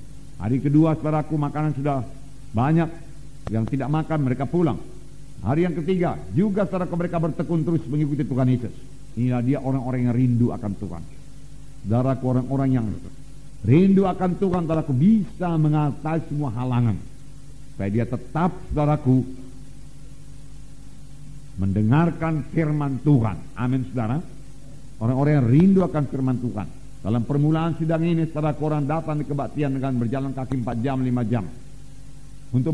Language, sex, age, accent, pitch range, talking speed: English, male, 50-69, Indonesian, 130-155 Hz, 130 wpm